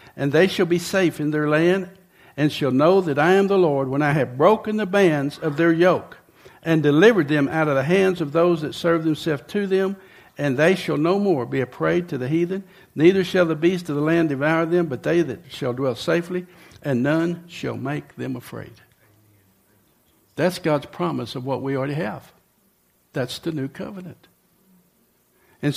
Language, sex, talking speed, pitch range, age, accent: English, male, 195 wpm, 140-180 Hz, 60-79, American